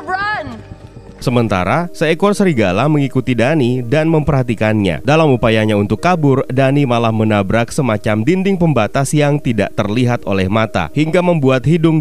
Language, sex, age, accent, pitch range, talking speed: Indonesian, male, 30-49, native, 110-150 Hz, 125 wpm